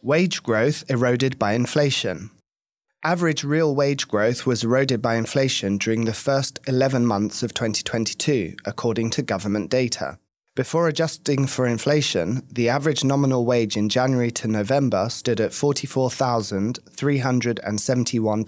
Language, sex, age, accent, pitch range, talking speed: English, male, 20-39, British, 115-135 Hz, 125 wpm